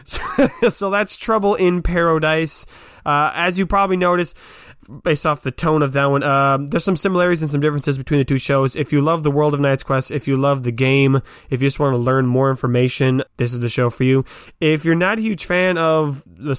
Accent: American